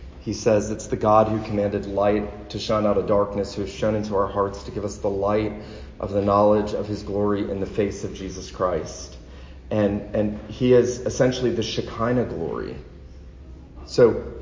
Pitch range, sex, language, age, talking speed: 95-120 Hz, male, English, 40-59, 185 wpm